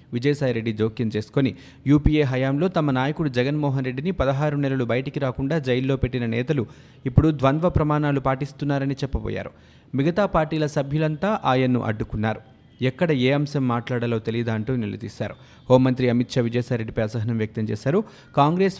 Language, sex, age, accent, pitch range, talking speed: Telugu, male, 30-49, native, 120-145 Hz, 130 wpm